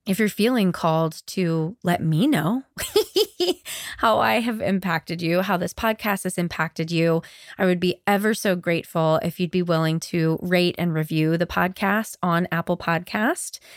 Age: 20-39